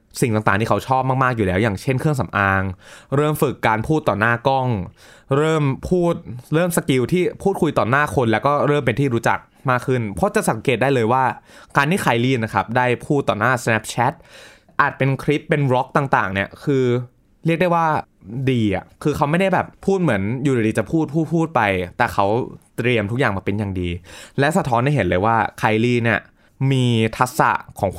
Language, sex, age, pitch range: Thai, male, 20-39, 105-140 Hz